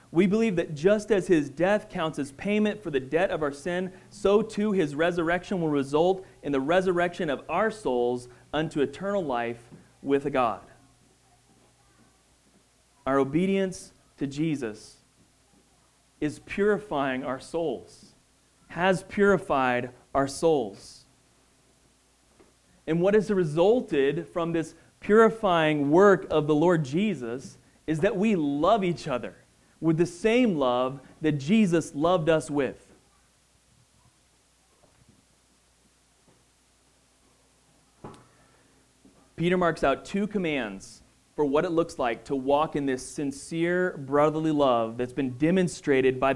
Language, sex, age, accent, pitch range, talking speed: English, male, 30-49, American, 135-180 Hz, 120 wpm